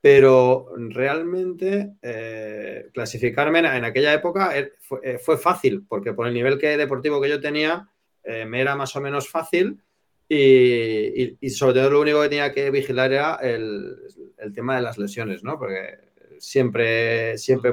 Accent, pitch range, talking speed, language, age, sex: Spanish, 110-140 Hz, 160 wpm, Spanish, 30-49, male